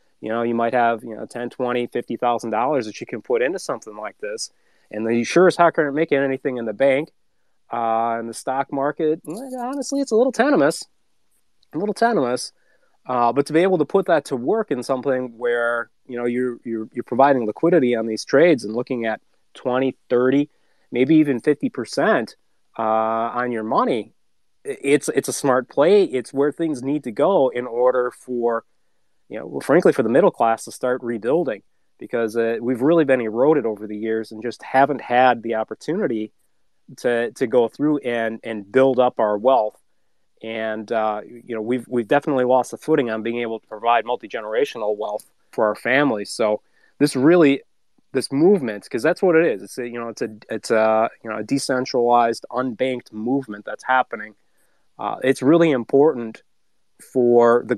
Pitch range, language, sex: 115-140 Hz, English, male